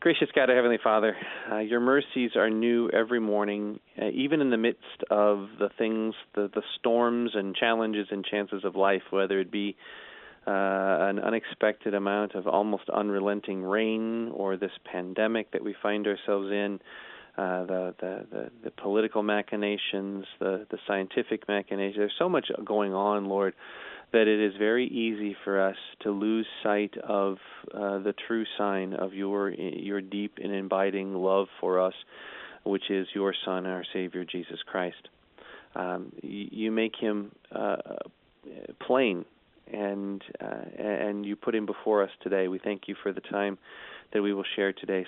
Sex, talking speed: male, 165 wpm